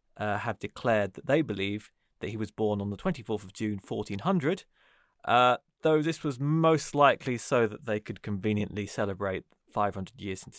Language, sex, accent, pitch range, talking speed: English, male, British, 100-140 Hz, 175 wpm